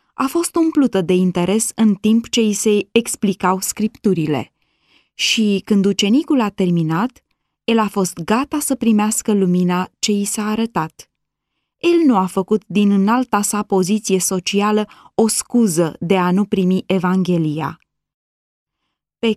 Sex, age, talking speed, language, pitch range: female, 20-39, 140 wpm, Romanian, 185-270 Hz